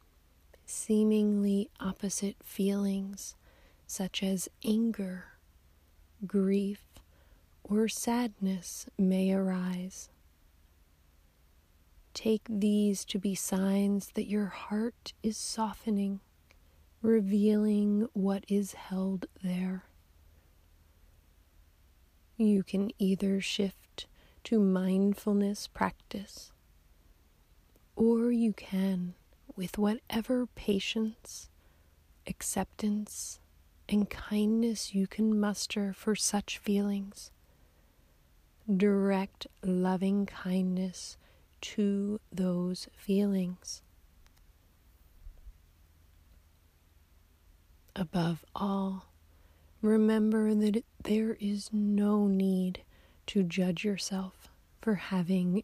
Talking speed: 70 wpm